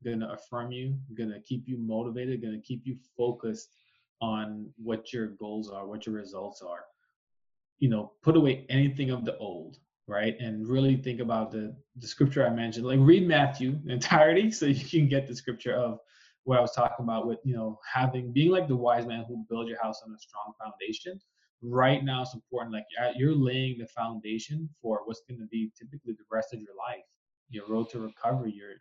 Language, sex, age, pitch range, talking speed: English, male, 20-39, 110-135 Hz, 210 wpm